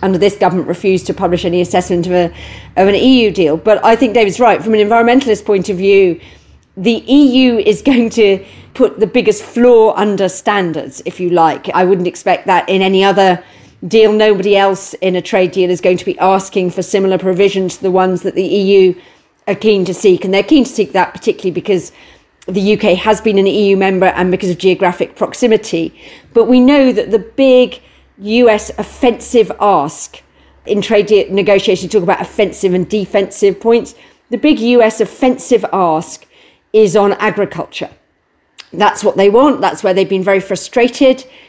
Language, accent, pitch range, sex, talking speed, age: English, British, 185-225 Hz, female, 180 wpm, 40-59